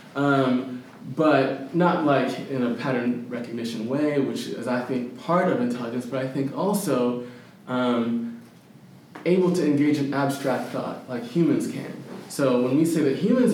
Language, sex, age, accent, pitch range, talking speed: English, male, 20-39, American, 130-170 Hz, 160 wpm